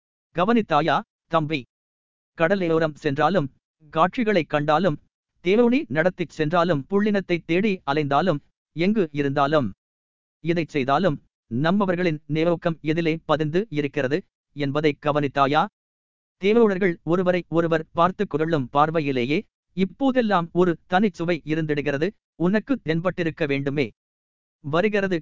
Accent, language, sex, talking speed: native, Tamil, male, 90 wpm